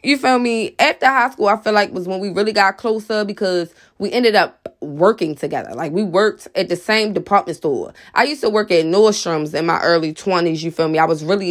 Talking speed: 240 wpm